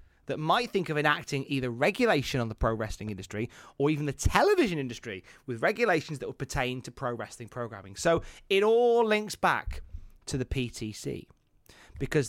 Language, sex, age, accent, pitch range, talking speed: English, male, 30-49, British, 120-180 Hz, 170 wpm